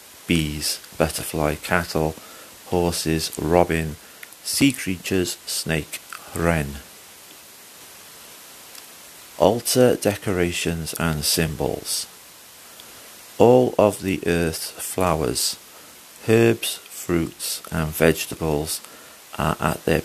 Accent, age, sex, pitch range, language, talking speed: British, 50-69, male, 80-105 Hz, English, 75 wpm